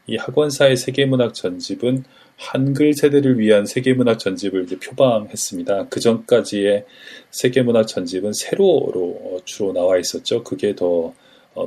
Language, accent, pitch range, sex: Korean, native, 95-125 Hz, male